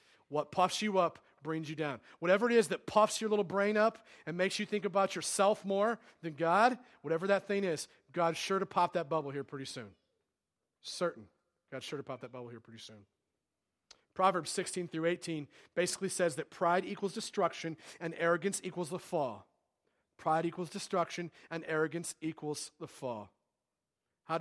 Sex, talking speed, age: male, 175 wpm, 40-59